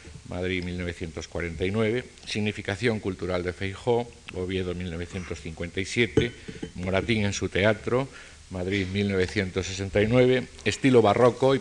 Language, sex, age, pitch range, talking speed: Spanish, male, 50-69, 90-110 Hz, 90 wpm